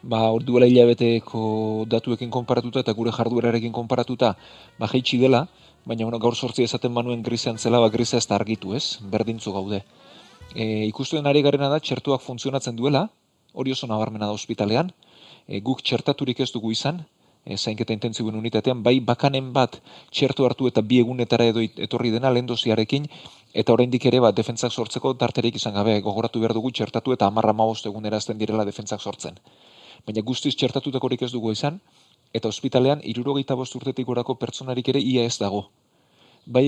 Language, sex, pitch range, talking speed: Spanish, male, 115-130 Hz, 155 wpm